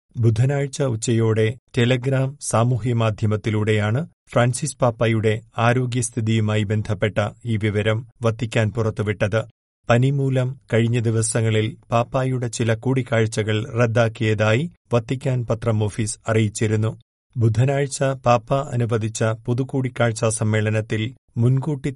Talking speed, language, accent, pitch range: 80 wpm, Malayalam, native, 110-130 Hz